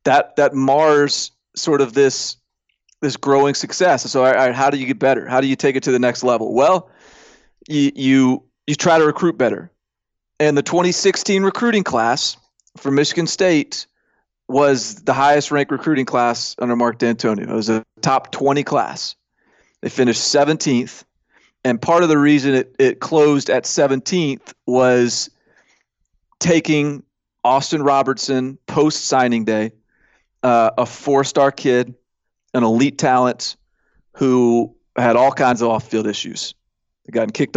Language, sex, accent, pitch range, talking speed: English, male, American, 125-155 Hz, 145 wpm